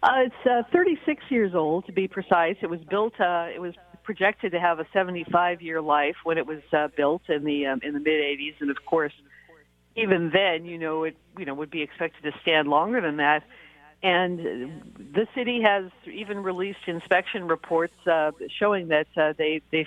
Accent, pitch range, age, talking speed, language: American, 160-200 Hz, 50-69, 200 wpm, English